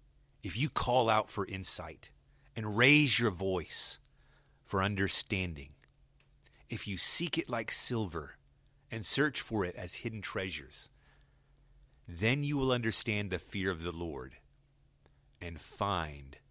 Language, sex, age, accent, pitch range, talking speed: English, male, 30-49, American, 85-110 Hz, 130 wpm